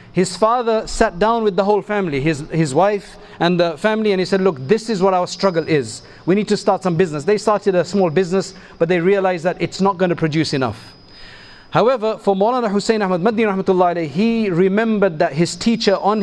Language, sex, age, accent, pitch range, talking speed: English, male, 40-59, South African, 175-210 Hz, 210 wpm